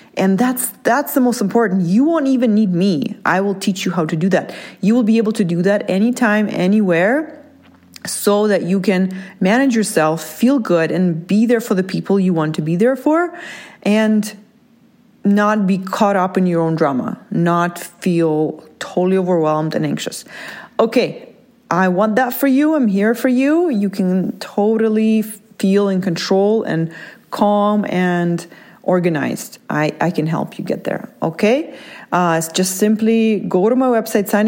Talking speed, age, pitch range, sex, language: 170 wpm, 30-49, 180-225 Hz, female, English